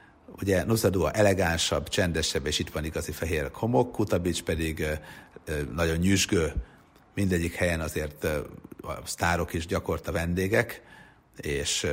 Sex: male